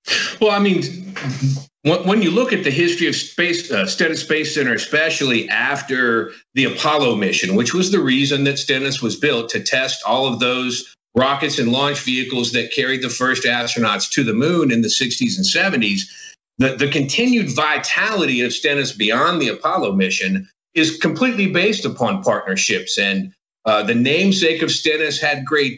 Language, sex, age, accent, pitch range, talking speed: English, male, 50-69, American, 130-175 Hz, 170 wpm